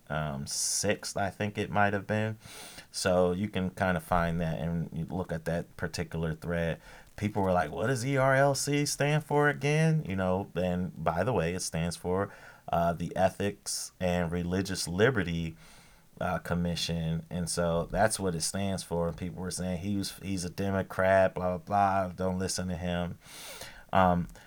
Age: 30-49